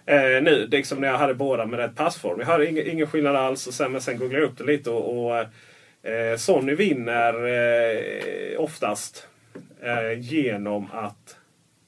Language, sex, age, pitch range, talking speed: Swedish, male, 30-49, 120-155 Hz, 185 wpm